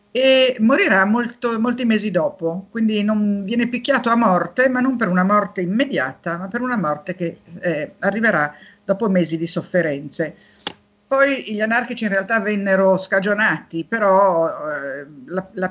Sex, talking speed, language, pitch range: female, 150 wpm, Italian, 170-230 Hz